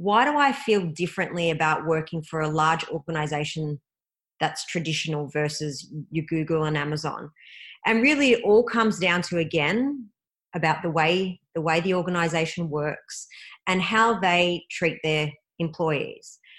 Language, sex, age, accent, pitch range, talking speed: English, female, 30-49, Australian, 160-220 Hz, 145 wpm